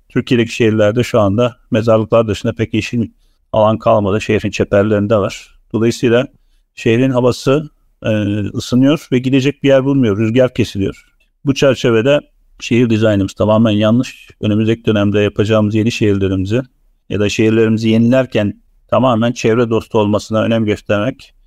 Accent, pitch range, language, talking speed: native, 110-125 Hz, Turkish, 125 wpm